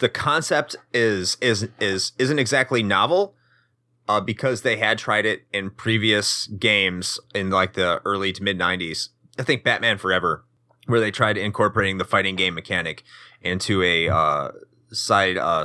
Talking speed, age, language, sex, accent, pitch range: 155 wpm, 30-49, English, male, American, 100-125 Hz